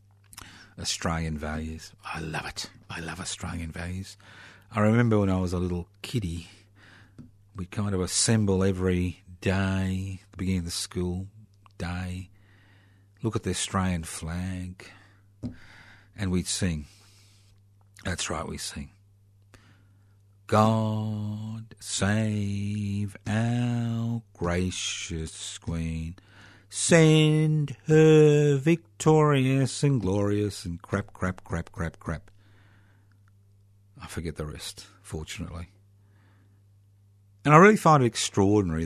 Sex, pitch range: male, 90-105 Hz